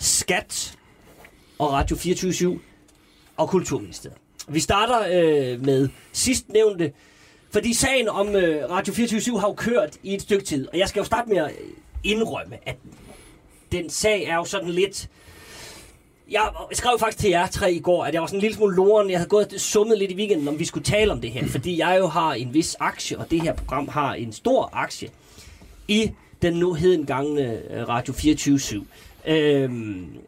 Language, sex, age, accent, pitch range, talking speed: Danish, male, 30-49, native, 145-210 Hz, 185 wpm